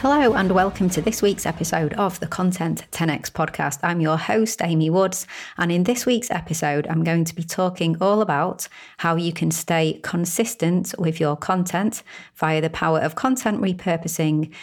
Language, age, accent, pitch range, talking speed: English, 30-49, British, 155-180 Hz, 175 wpm